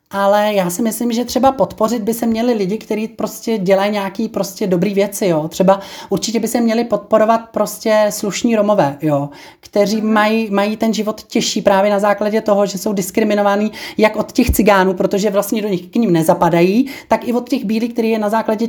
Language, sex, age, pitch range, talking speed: Czech, male, 30-49, 185-220 Hz, 200 wpm